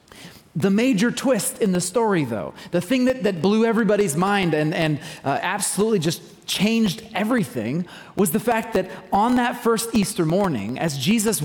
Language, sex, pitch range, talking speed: English, male, 170-230 Hz, 170 wpm